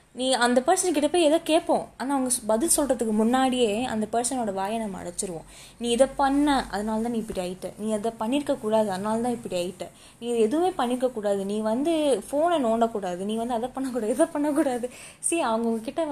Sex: female